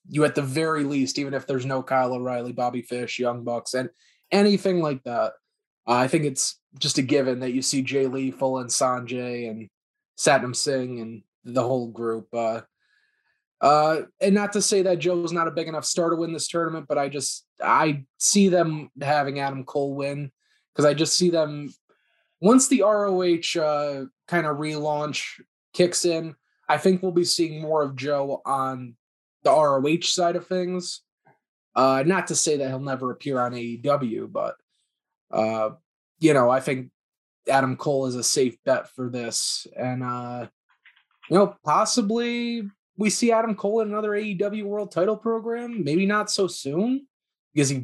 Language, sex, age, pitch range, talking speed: English, male, 20-39, 130-175 Hz, 180 wpm